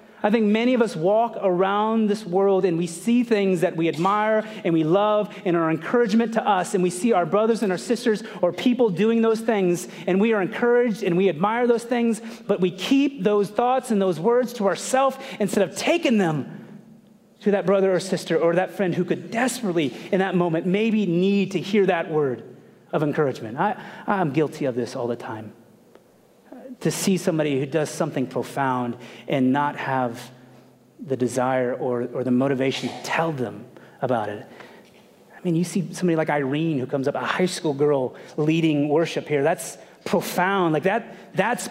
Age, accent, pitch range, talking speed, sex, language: 30-49, American, 165-220 Hz, 190 wpm, male, English